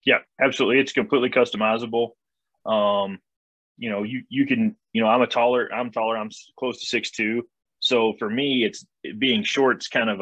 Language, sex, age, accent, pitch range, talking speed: English, male, 20-39, American, 100-115 Hz, 180 wpm